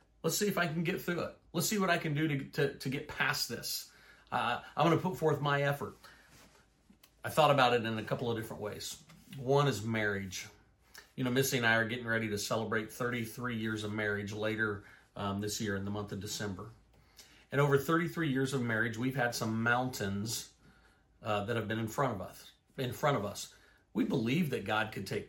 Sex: male